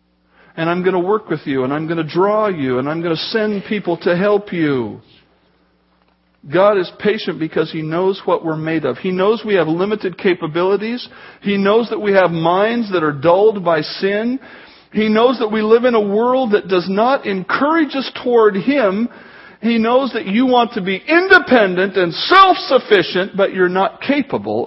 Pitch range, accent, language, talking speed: 150-220 Hz, American, English, 190 wpm